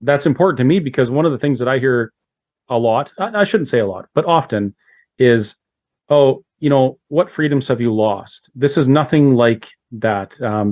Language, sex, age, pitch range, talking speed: English, male, 40-59, 115-140 Hz, 190 wpm